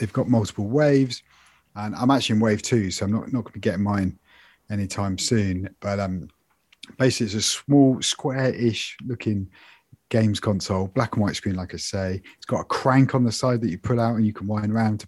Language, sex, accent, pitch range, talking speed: English, male, British, 105-125 Hz, 225 wpm